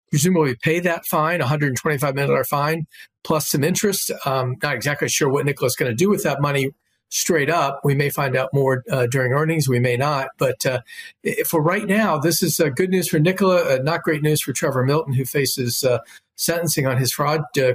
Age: 50-69